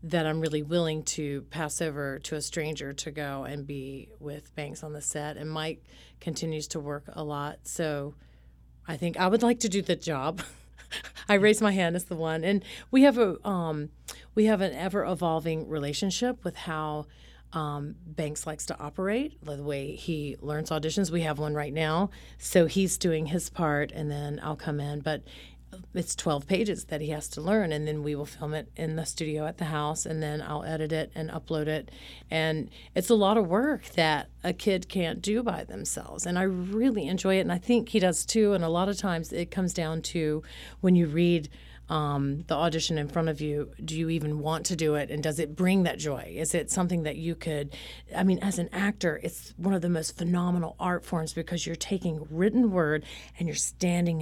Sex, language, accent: female, English, American